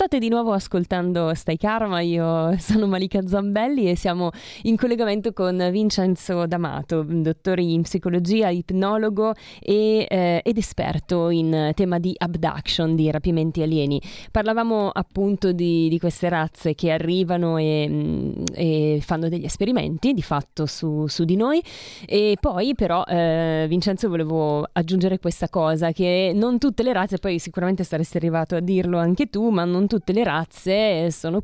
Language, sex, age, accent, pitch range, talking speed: Italian, female, 20-39, native, 165-205 Hz, 155 wpm